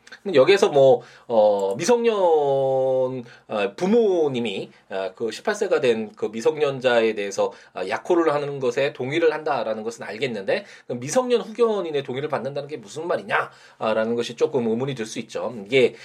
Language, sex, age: Korean, male, 20-39